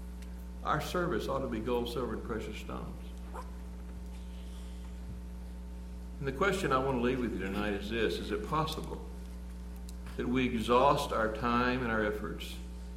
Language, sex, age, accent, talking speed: English, male, 60-79, American, 155 wpm